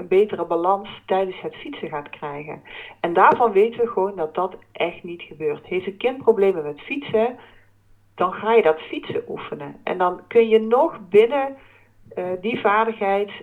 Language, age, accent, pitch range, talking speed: Dutch, 40-59, Dutch, 180-225 Hz, 175 wpm